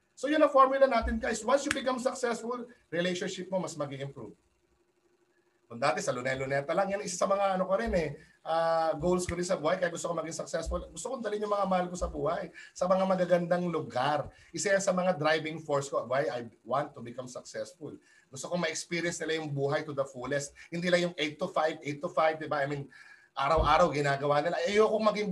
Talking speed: 220 wpm